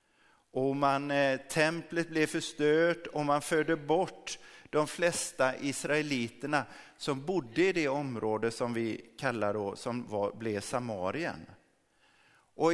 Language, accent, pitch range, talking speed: Swedish, native, 115-160 Hz, 120 wpm